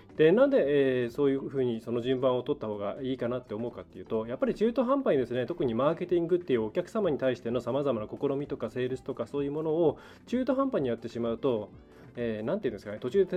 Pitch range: 120-185 Hz